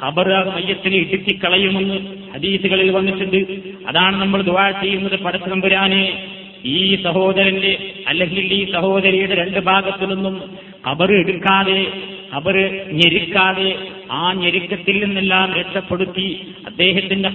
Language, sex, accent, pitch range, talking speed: Malayalam, male, native, 180-195 Hz, 60 wpm